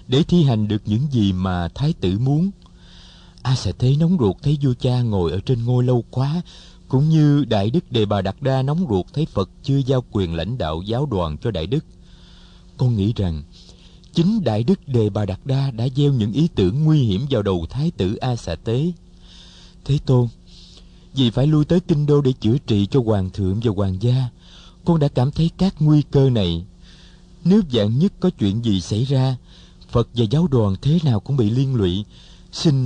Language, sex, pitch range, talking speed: Vietnamese, male, 95-135 Hz, 210 wpm